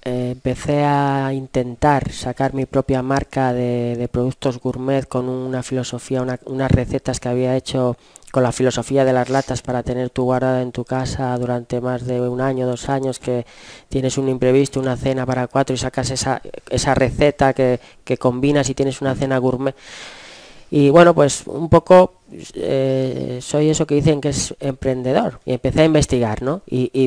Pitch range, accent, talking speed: 125-135 Hz, Spanish, 180 wpm